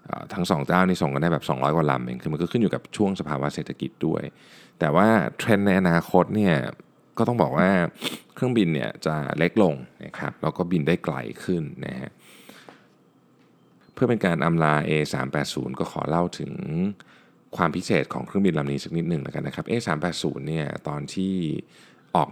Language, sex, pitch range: Thai, male, 70-90 Hz